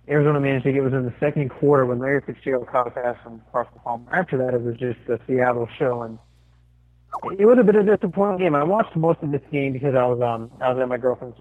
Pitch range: 120-155 Hz